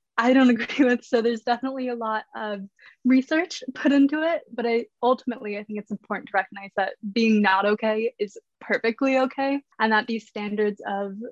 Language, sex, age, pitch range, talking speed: English, female, 20-39, 210-255 Hz, 185 wpm